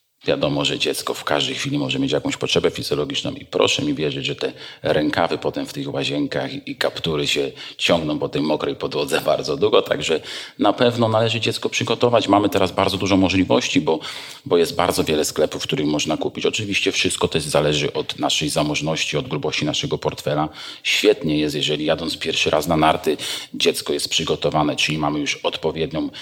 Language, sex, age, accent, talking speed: Polish, male, 40-59, native, 180 wpm